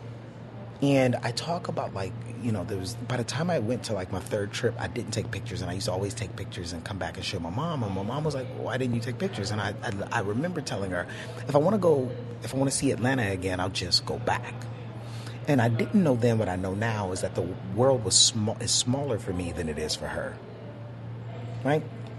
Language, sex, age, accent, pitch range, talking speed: English, male, 30-49, American, 110-125 Hz, 255 wpm